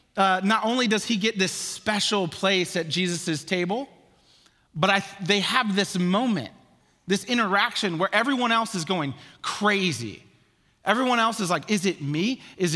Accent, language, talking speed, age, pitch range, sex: American, English, 155 wpm, 30-49, 155-215 Hz, male